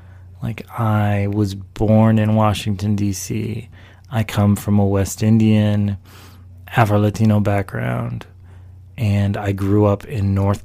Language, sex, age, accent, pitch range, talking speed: English, male, 30-49, American, 95-110 Hz, 120 wpm